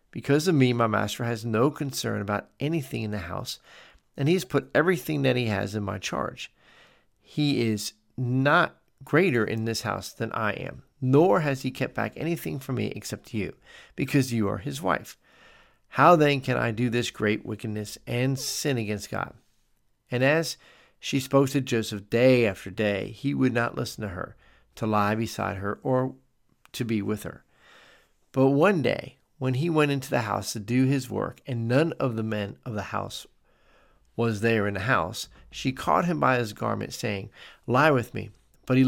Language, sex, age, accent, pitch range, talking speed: English, male, 50-69, American, 110-135 Hz, 190 wpm